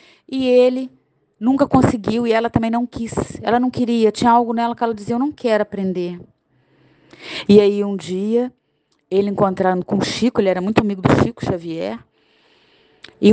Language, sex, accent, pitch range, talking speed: Portuguese, female, Brazilian, 195-255 Hz, 175 wpm